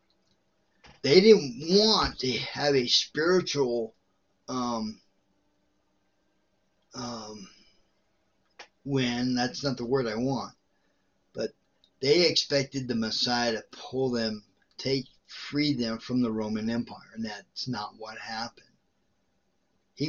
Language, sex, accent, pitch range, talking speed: English, male, American, 110-140 Hz, 110 wpm